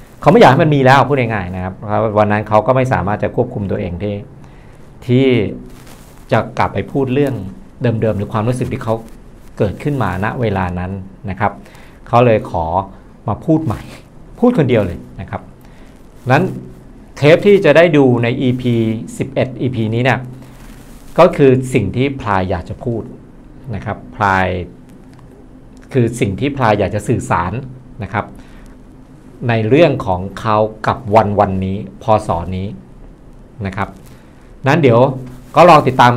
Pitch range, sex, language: 100-130 Hz, male, Thai